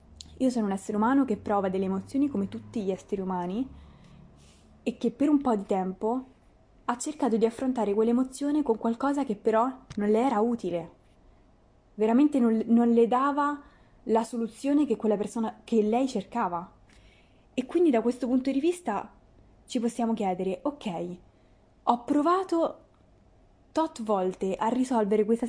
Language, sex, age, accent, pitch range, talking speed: Italian, female, 20-39, native, 195-250 Hz, 155 wpm